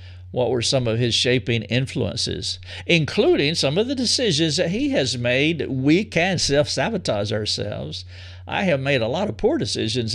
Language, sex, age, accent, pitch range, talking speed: English, male, 50-69, American, 95-135 Hz, 170 wpm